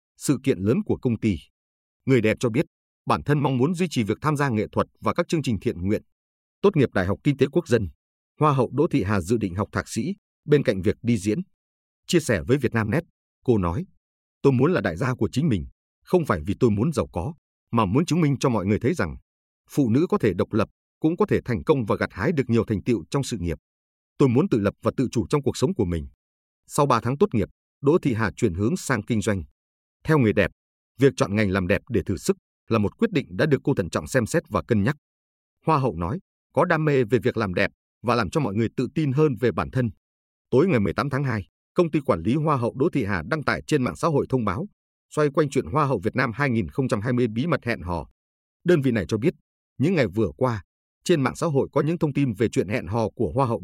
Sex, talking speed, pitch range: male, 255 wpm, 85-140 Hz